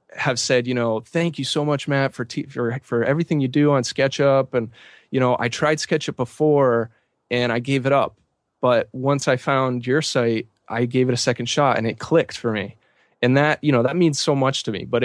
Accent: American